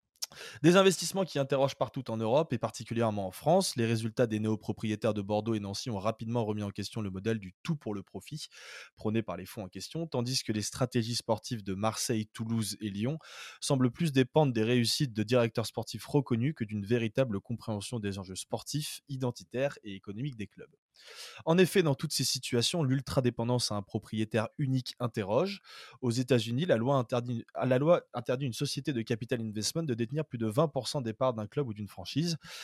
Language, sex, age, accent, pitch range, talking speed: French, male, 20-39, French, 110-140 Hz, 190 wpm